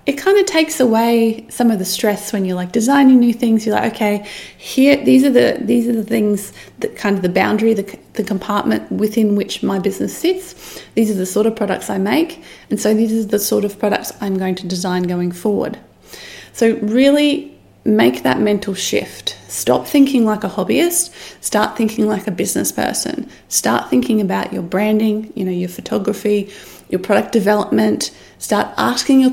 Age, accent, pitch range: 30-49, Australian, 200-260 Hz